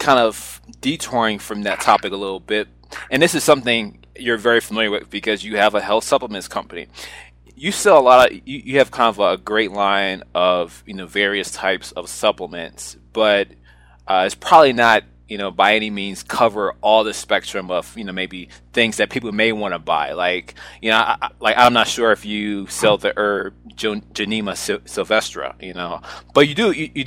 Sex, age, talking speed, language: male, 20-39, 210 wpm, English